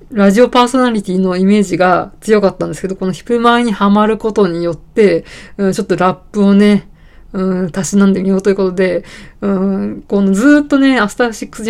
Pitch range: 180-215 Hz